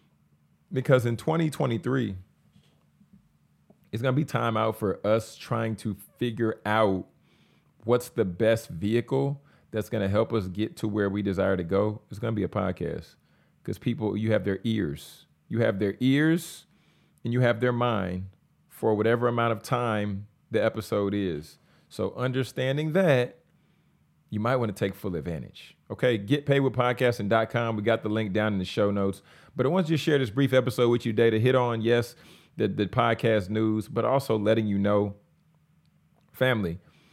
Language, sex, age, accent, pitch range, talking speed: English, male, 30-49, American, 110-145 Hz, 175 wpm